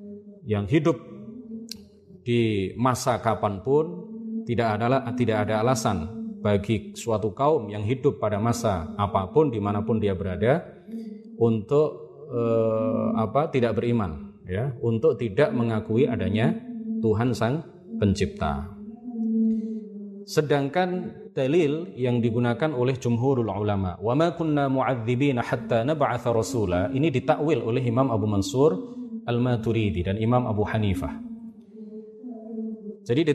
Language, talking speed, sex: Indonesian, 95 wpm, male